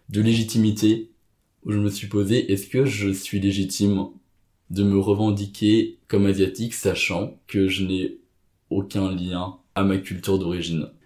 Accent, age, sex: French, 20-39, male